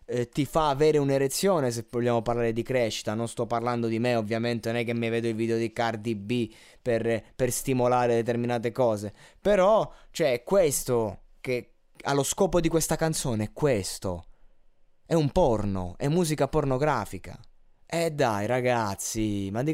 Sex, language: male, Italian